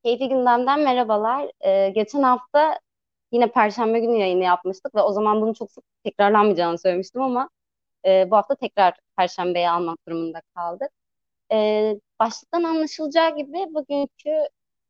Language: Turkish